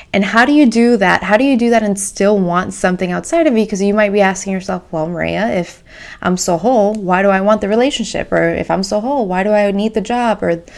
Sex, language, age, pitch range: female, English, 20-39, 180-220 Hz